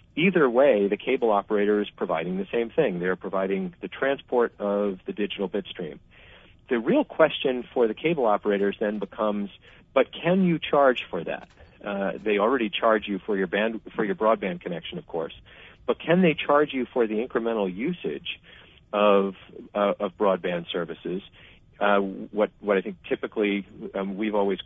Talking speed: 170 wpm